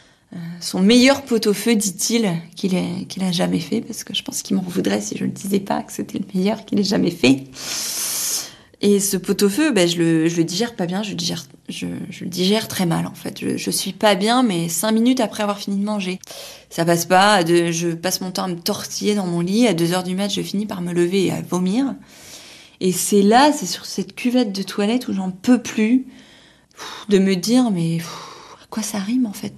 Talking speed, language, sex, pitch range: 230 wpm, French, female, 175-225 Hz